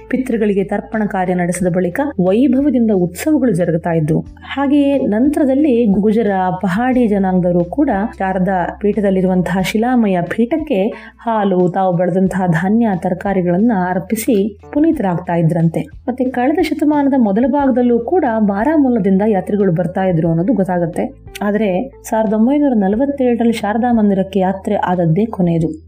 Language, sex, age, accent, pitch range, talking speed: Kannada, female, 20-39, native, 185-230 Hz, 105 wpm